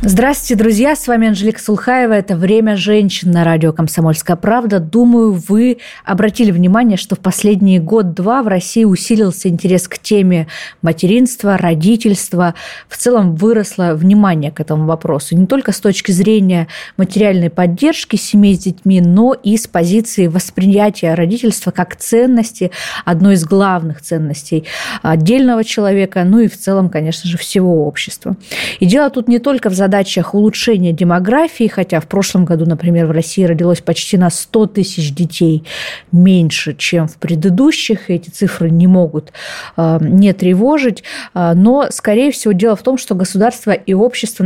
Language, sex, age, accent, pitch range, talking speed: Russian, female, 20-39, native, 175-220 Hz, 155 wpm